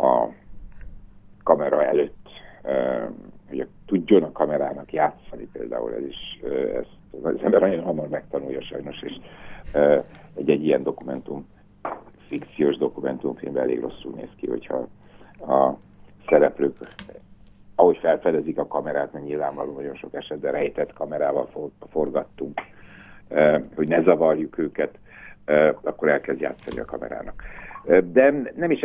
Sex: male